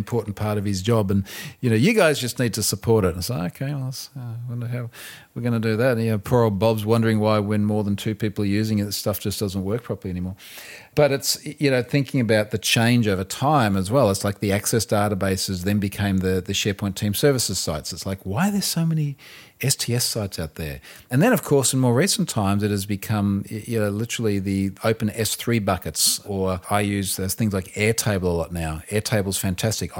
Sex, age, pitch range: male, 40-59, 95-120 Hz